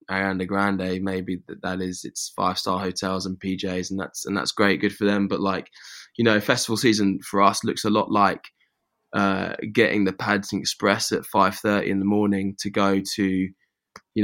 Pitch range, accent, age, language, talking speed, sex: 95-110 Hz, British, 10-29, English, 190 wpm, male